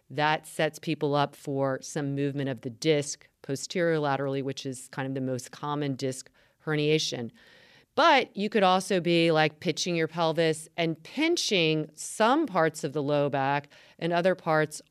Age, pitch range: 40-59, 140-170 Hz